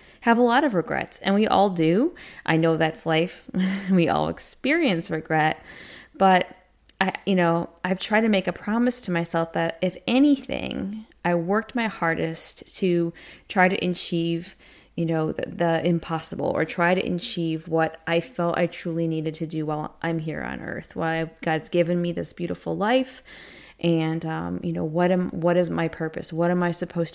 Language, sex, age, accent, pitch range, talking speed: English, female, 20-39, American, 165-195 Hz, 185 wpm